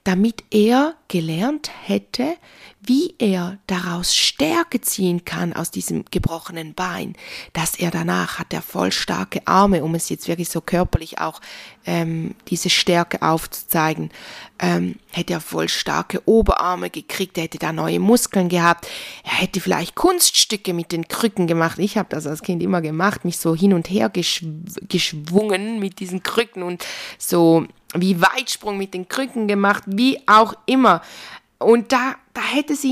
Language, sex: German, female